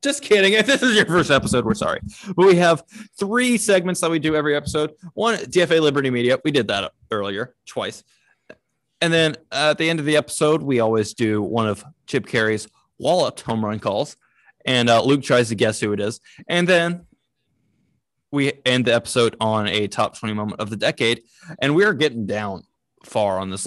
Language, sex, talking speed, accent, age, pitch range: English, male, 200 wpm, American, 20-39, 115-165 Hz